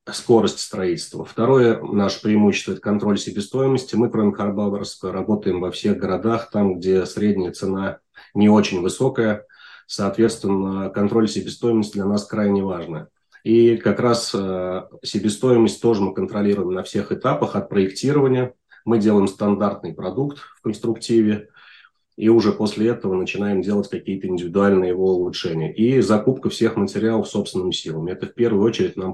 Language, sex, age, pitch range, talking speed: Russian, male, 30-49, 95-115 Hz, 140 wpm